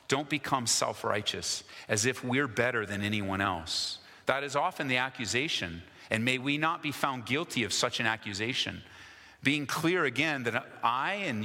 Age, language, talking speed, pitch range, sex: 40-59, English, 170 wpm, 105-140 Hz, male